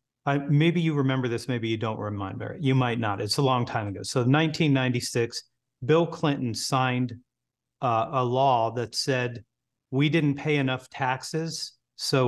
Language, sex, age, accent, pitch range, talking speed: English, male, 40-59, American, 120-150 Hz, 155 wpm